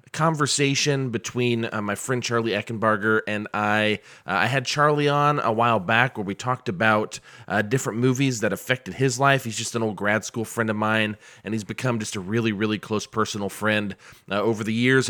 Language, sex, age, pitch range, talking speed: English, male, 30-49, 115-155 Hz, 205 wpm